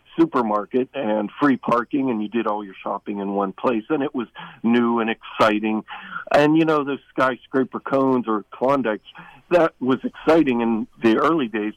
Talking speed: 175 wpm